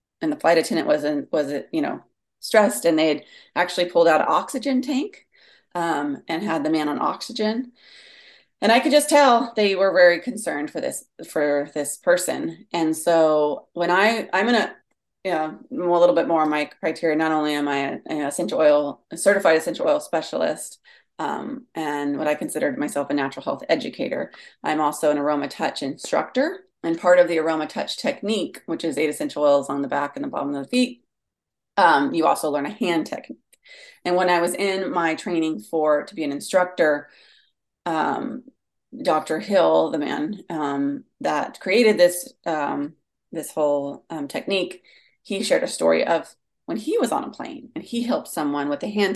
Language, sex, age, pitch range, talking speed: English, female, 30-49, 150-220 Hz, 190 wpm